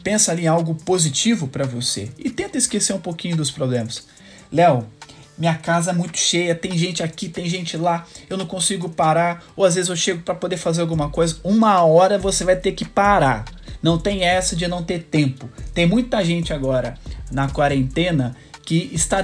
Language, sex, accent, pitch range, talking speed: Portuguese, male, Brazilian, 145-195 Hz, 195 wpm